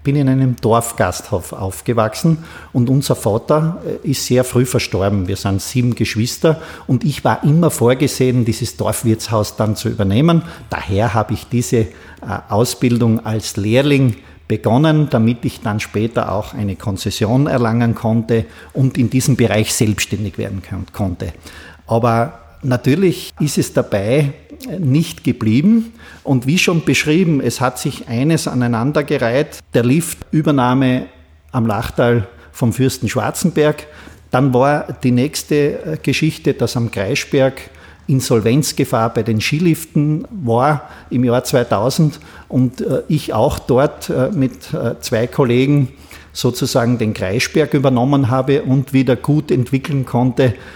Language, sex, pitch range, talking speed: German, male, 110-145 Hz, 130 wpm